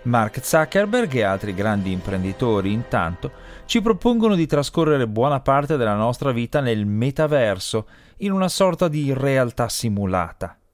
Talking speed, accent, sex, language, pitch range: 135 wpm, native, male, Italian, 115-175 Hz